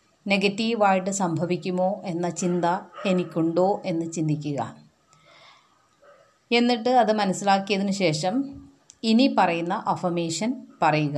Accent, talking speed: native, 80 wpm